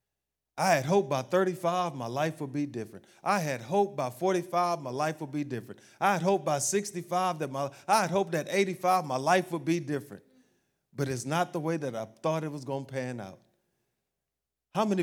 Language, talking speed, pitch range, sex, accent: English, 210 wpm, 120-160 Hz, male, American